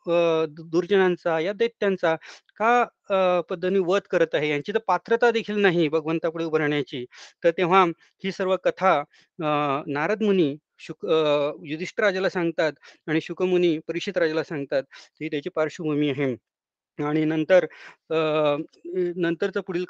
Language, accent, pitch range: Marathi, native, 160-195 Hz